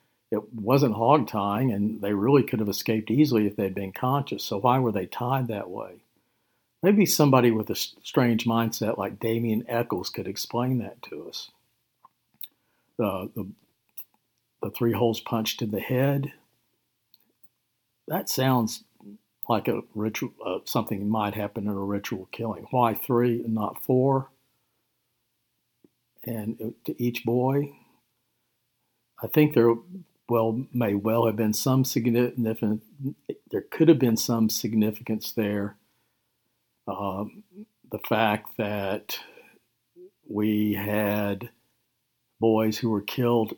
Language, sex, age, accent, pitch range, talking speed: English, male, 50-69, American, 105-125 Hz, 130 wpm